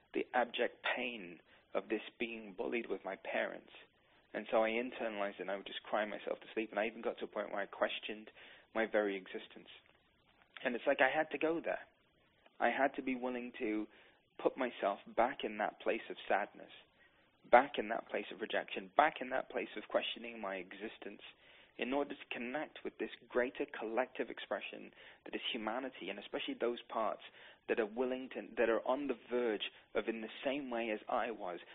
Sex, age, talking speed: male, 20-39, 200 wpm